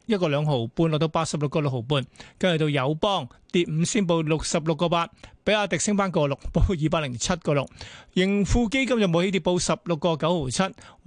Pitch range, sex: 150-185 Hz, male